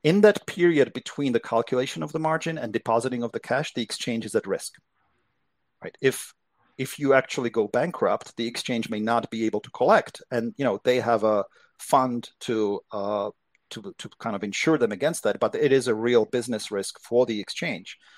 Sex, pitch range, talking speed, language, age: male, 110-135 Hz, 200 wpm, English, 40-59